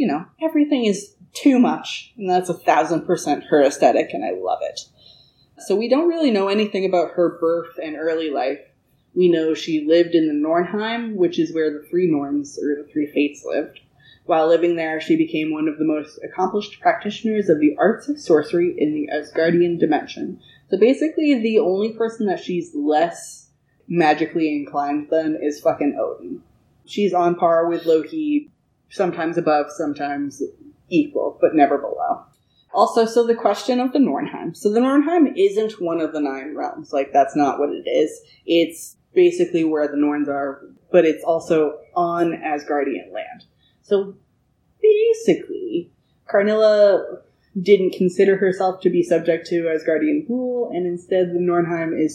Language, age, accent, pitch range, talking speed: English, 20-39, American, 155-235 Hz, 165 wpm